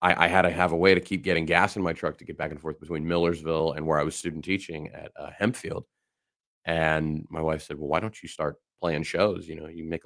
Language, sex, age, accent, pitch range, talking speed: English, male, 30-49, American, 75-85 Hz, 270 wpm